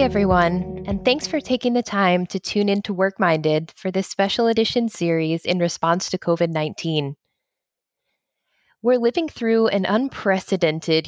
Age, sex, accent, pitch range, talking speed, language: 20-39, female, American, 165-210 Hz, 135 wpm, English